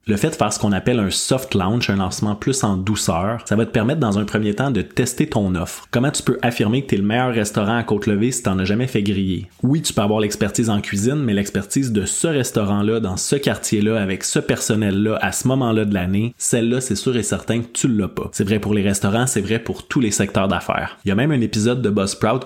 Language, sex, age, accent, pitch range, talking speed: French, male, 20-39, Canadian, 100-125 Hz, 260 wpm